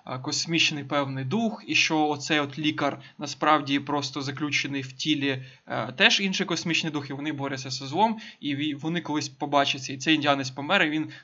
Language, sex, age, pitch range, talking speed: Ukrainian, male, 20-39, 140-165 Hz, 175 wpm